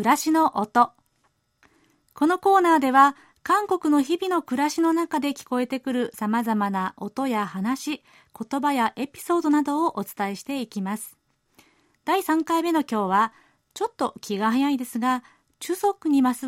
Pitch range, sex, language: 225-310 Hz, female, Japanese